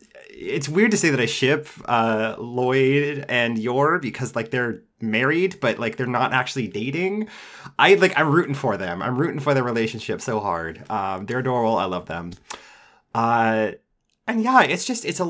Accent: American